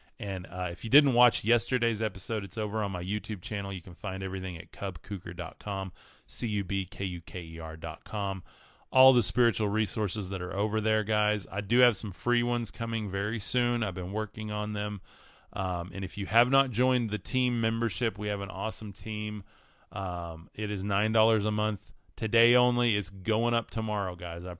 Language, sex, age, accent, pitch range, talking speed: English, male, 30-49, American, 95-120 Hz, 180 wpm